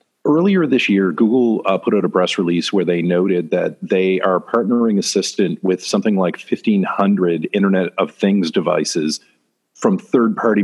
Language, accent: English, American